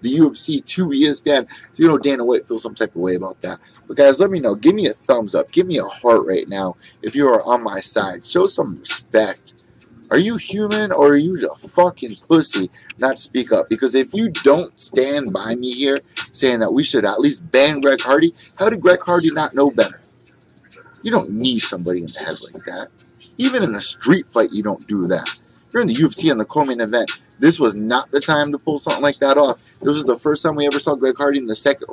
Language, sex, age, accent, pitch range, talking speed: English, male, 30-49, American, 120-165 Hz, 235 wpm